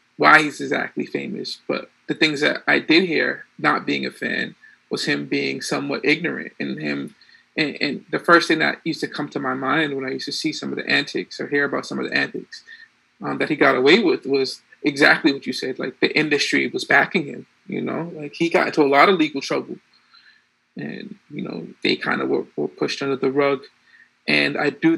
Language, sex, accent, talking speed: English, male, American, 220 wpm